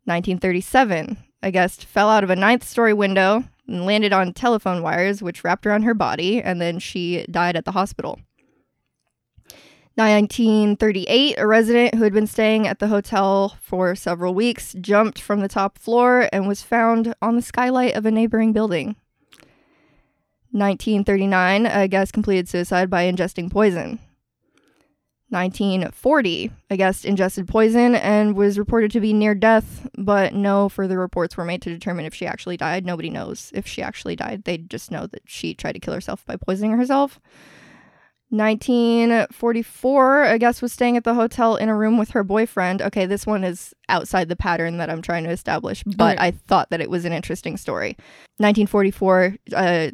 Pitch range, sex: 185-225 Hz, female